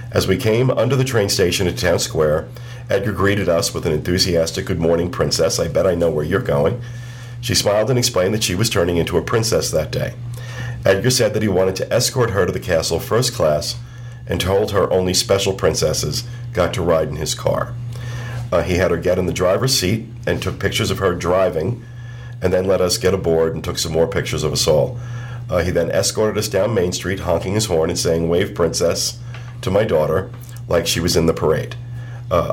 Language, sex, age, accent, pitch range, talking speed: English, male, 50-69, American, 95-120 Hz, 220 wpm